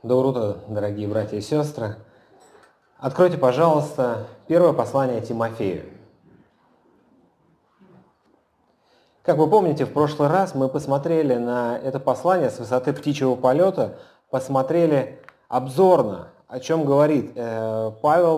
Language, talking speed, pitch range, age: Russian, 110 wpm, 125-165 Hz, 30-49